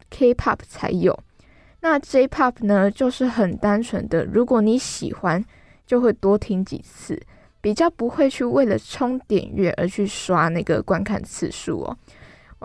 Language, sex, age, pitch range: Chinese, female, 10-29, 195-245 Hz